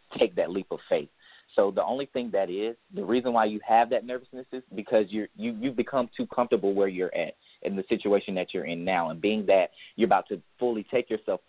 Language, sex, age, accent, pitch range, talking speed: English, male, 30-49, American, 100-115 Hz, 235 wpm